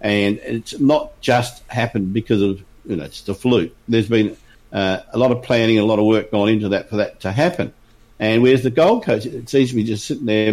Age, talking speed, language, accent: 50-69, 240 wpm, English, Australian